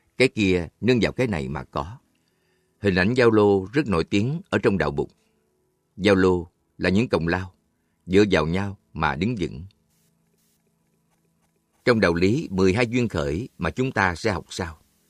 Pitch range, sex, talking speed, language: 80-110 Hz, male, 170 wpm, Vietnamese